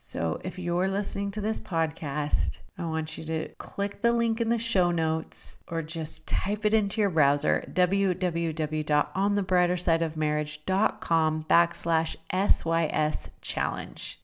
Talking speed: 130 wpm